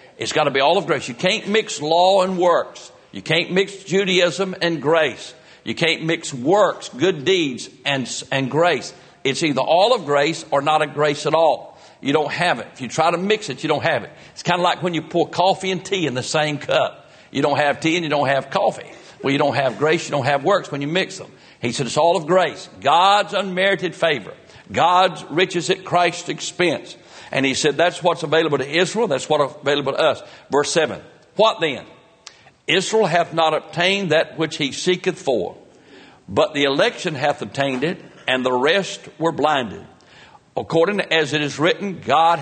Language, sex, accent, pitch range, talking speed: English, male, American, 145-180 Hz, 210 wpm